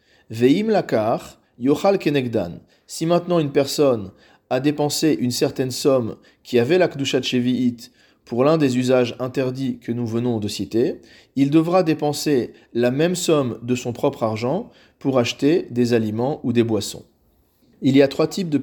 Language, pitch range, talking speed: French, 120-145 Hz, 160 wpm